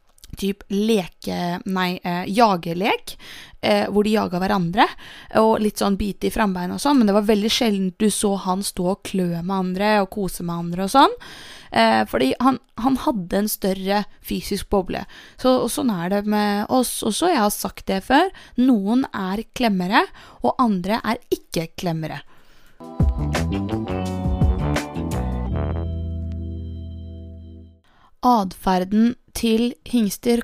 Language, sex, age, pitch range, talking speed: English, female, 20-39, 180-225 Hz, 145 wpm